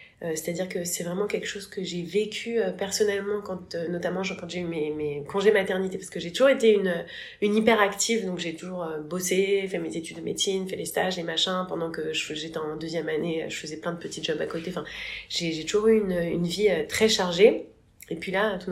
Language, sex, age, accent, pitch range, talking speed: French, female, 20-39, French, 165-210 Hz, 220 wpm